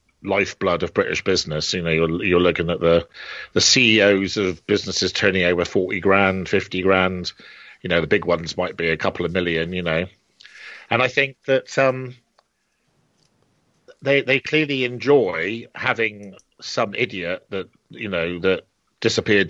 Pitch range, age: 90-120 Hz, 40-59